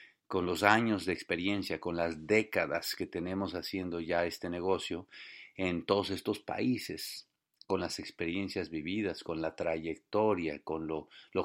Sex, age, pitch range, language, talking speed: male, 50-69, 85-105 Hz, English, 145 wpm